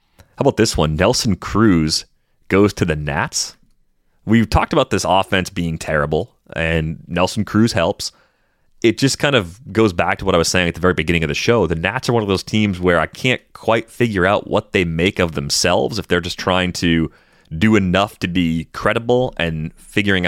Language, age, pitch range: English, 30-49, 80-100 Hz